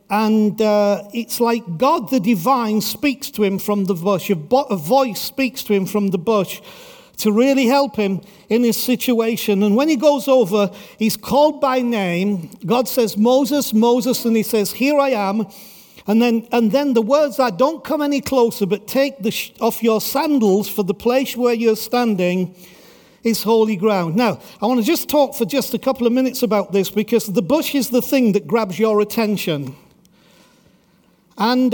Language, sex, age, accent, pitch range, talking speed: English, male, 50-69, British, 210-265 Hz, 190 wpm